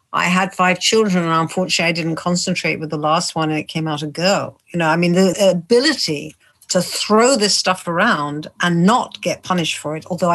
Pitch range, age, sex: 160-200 Hz, 60-79, female